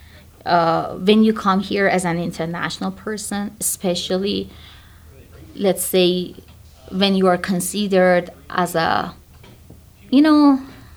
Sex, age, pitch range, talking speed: female, 20-39, 165-195 Hz, 110 wpm